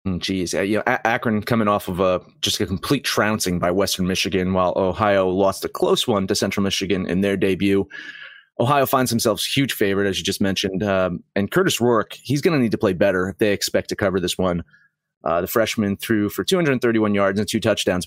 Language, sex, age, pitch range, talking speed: English, male, 30-49, 95-120 Hz, 215 wpm